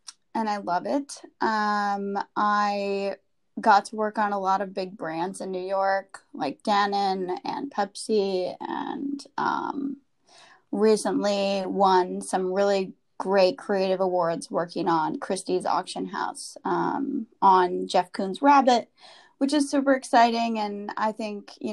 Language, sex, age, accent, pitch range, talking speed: English, female, 20-39, American, 190-220 Hz, 135 wpm